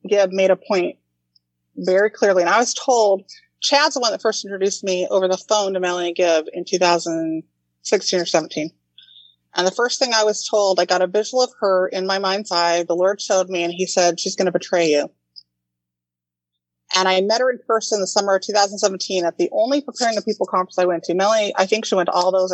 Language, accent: English, American